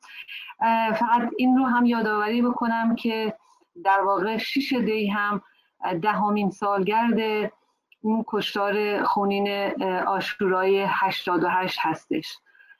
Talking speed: 100 wpm